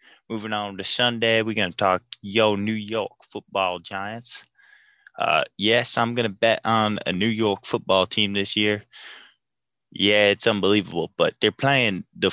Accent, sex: American, male